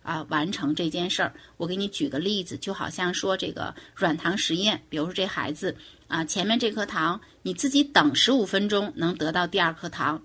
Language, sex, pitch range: Chinese, female, 165-235 Hz